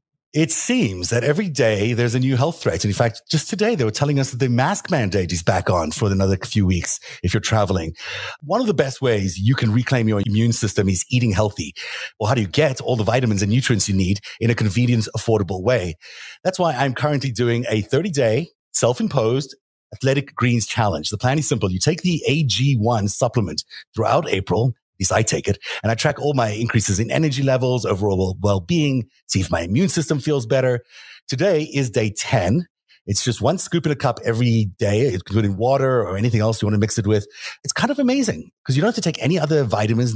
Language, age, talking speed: English, 30-49, 220 wpm